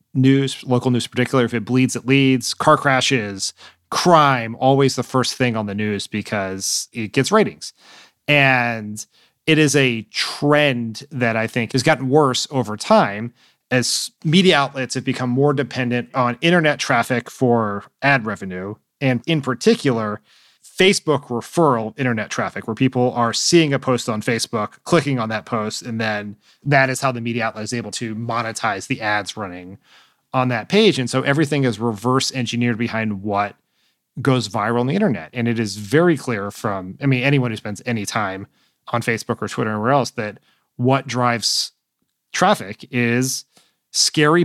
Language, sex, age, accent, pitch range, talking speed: English, male, 30-49, American, 115-135 Hz, 170 wpm